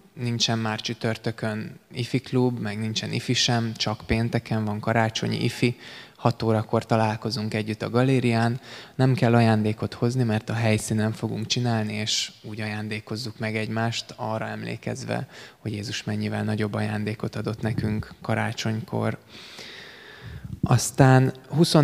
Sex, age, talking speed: male, 20-39, 125 wpm